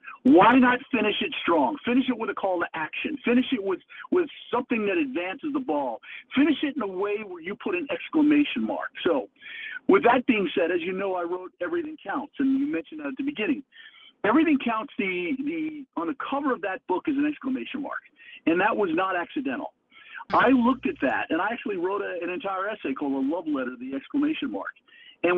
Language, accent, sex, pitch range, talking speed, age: English, American, male, 225-310 Hz, 215 wpm, 50-69